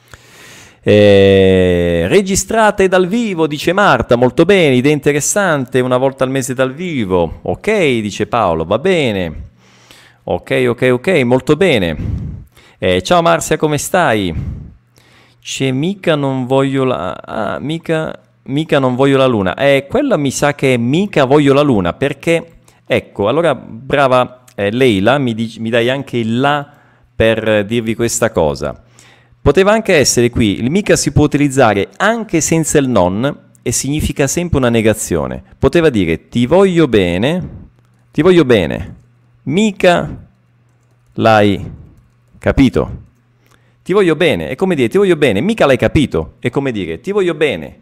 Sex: male